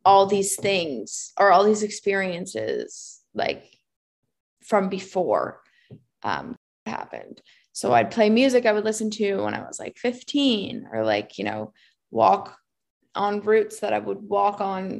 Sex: female